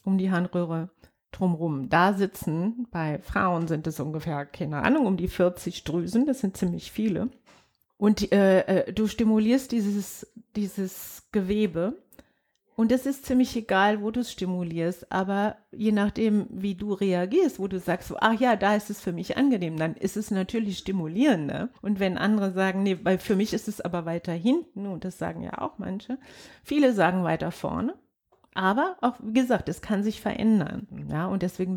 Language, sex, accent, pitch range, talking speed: German, female, German, 175-215 Hz, 175 wpm